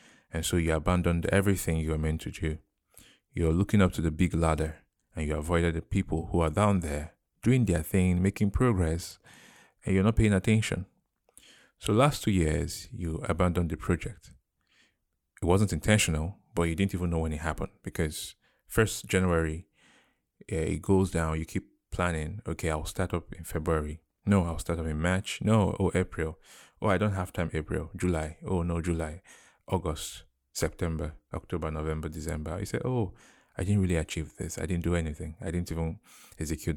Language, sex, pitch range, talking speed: English, male, 80-95 Hz, 180 wpm